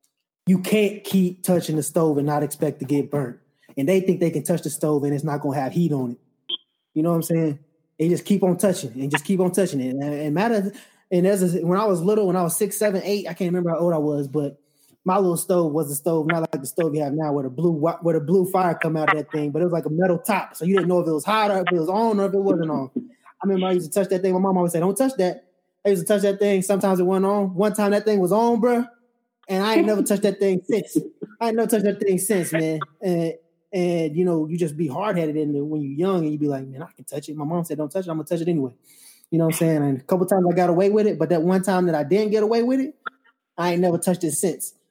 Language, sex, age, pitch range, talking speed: English, male, 20-39, 155-190 Hz, 310 wpm